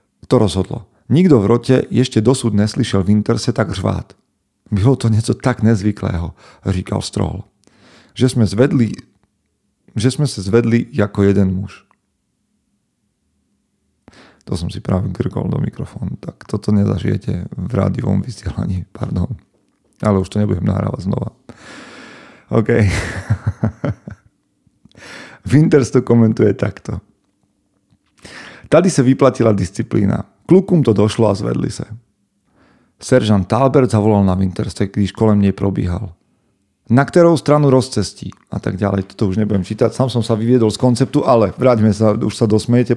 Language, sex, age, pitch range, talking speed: Slovak, male, 40-59, 100-125 Hz, 130 wpm